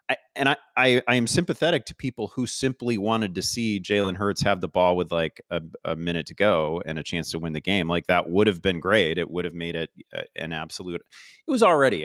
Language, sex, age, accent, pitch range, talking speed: English, male, 30-49, American, 80-100 Hz, 240 wpm